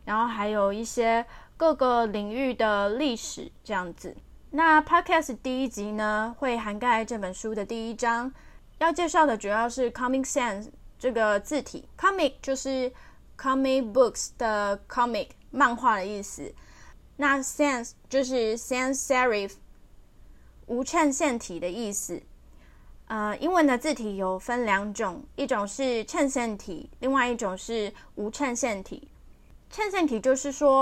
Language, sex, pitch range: Chinese, female, 210-275 Hz